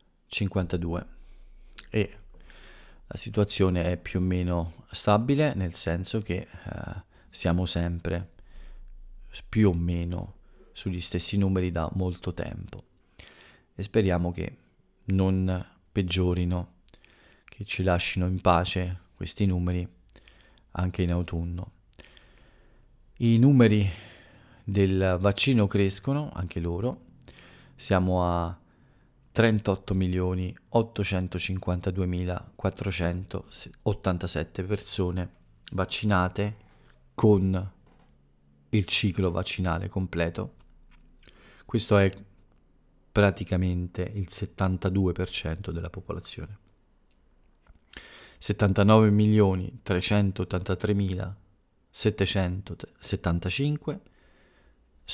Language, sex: Italian, male